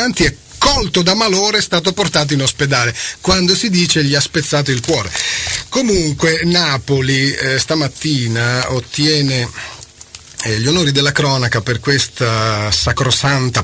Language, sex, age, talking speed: Italian, male, 30-49, 130 wpm